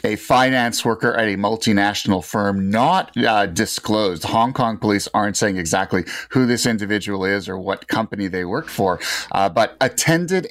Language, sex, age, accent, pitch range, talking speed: English, male, 30-49, American, 95-120 Hz, 165 wpm